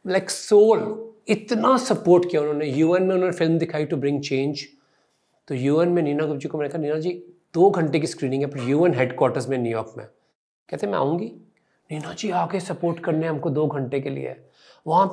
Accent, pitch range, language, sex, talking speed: native, 150-210 Hz, Hindi, male, 200 wpm